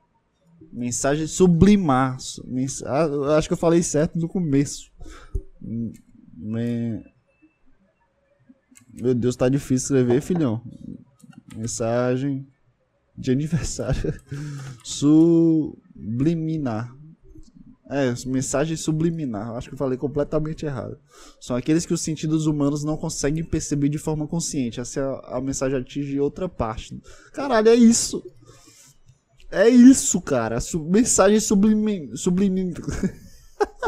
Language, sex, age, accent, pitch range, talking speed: Portuguese, male, 20-39, Brazilian, 135-190 Hz, 100 wpm